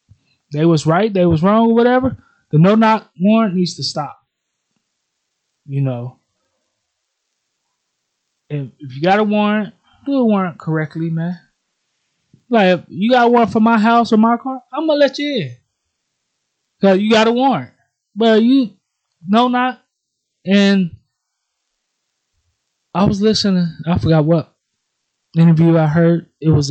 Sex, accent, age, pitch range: male, American, 20-39, 150-205 Hz